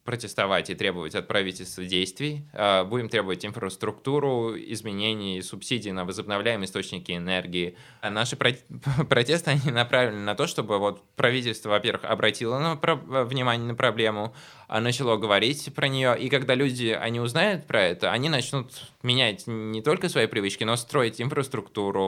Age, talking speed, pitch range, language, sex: 20-39, 135 wpm, 100-125 Hz, Russian, male